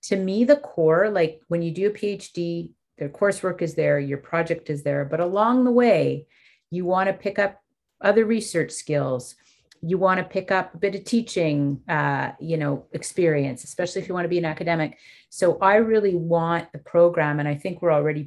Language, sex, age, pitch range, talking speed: English, female, 40-59, 160-195 Hz, 205 wpm